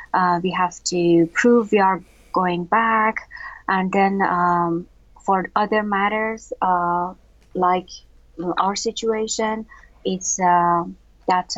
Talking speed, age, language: 115 wpm, 30-49, English